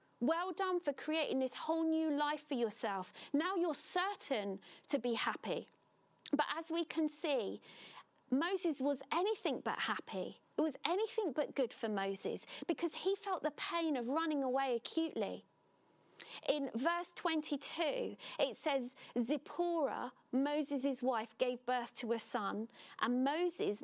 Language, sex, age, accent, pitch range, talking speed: English, female, 40-59, British, 250-325 Hz, 145 wpm